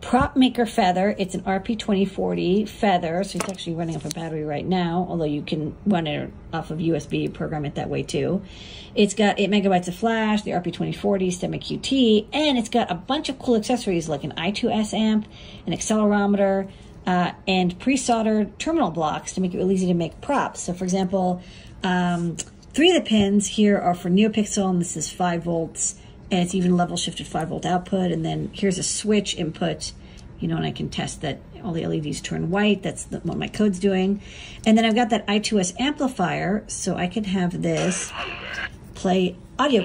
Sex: female